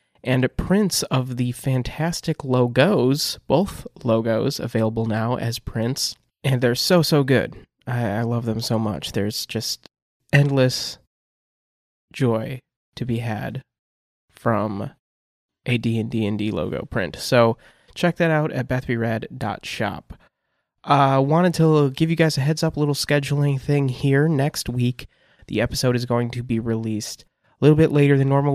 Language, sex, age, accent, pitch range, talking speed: English, male, 20-39, American, 115-140 Hz, 150 wpm